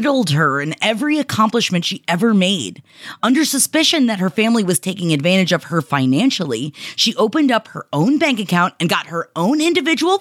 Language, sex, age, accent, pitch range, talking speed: English, female, 30-49, American, 185-275 Hz, 175 wpm